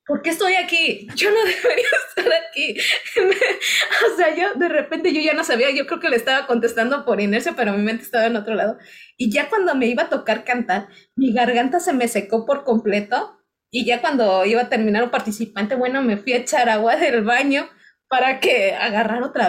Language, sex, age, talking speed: Spanish, female, 20-39, 210 wpm